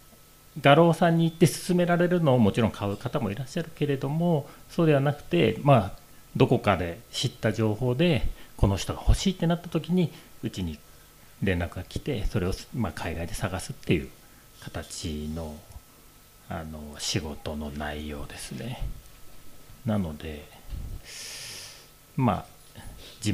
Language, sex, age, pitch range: Japanese, male, 40-59, 90-130 Hz